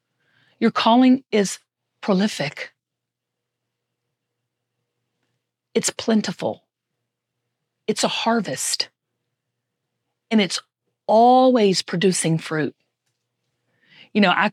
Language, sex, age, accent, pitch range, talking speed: English, female, 40-59, American, 180-240 Hz, 70 wpm